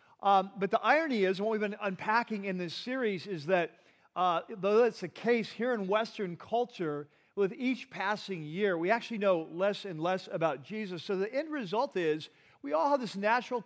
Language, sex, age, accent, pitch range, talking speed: English, male, 40-59, American, 185-225 Hz, 200 wpm